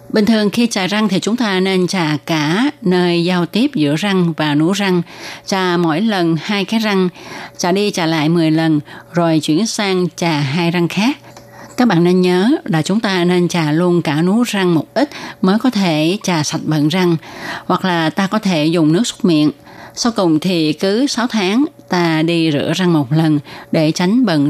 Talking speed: 205 wpm